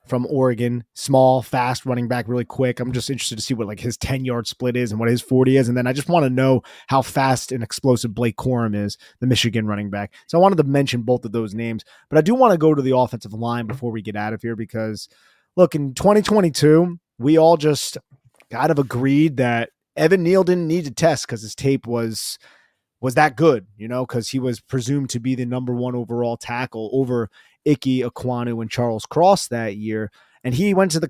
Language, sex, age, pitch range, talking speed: English, male, 30-49, 120-155 Hz, 230 wpm